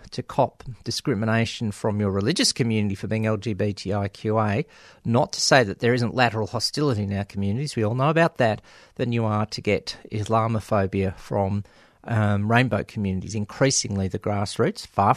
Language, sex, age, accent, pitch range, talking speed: English, male, 40-59, Australian, 105-125 Hz, 160 wpm